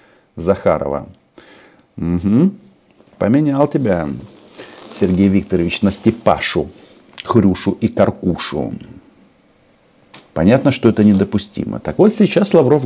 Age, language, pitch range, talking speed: 50-69, Russian, 95-135 Hz, 85 wpm